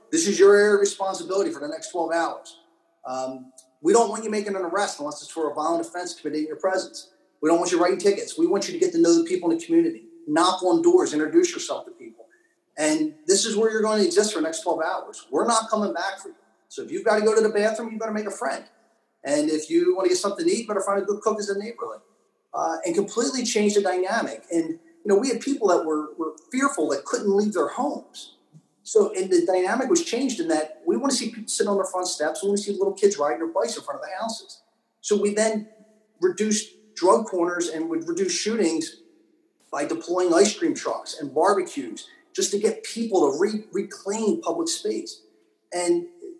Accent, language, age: American, English, 30-49